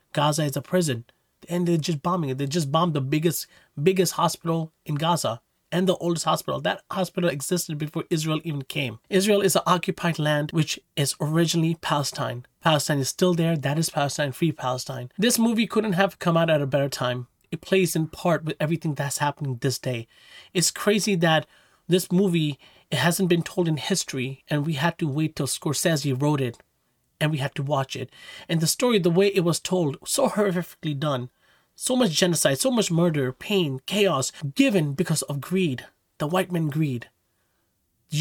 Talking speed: 190 wpm